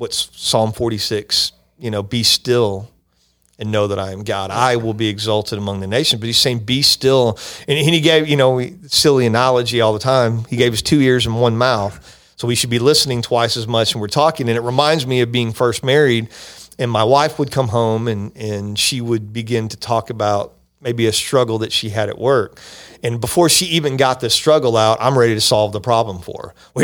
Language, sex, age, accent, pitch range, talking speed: English, male, 40-59, American, 110-135 Hz, 225 wpm